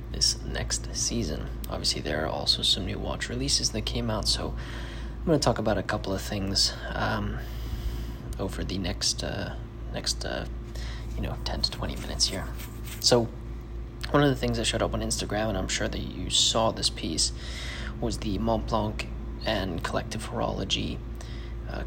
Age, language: 20-39, English